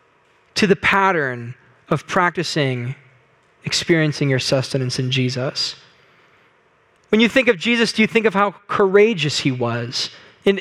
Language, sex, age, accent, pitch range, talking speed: English, male, 20-39, American, 150-205 Hz, 135 wpm